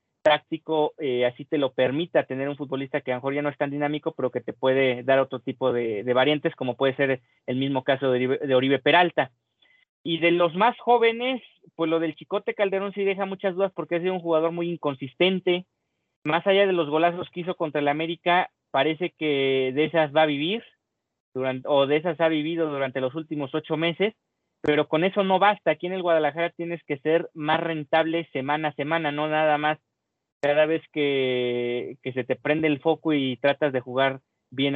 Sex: male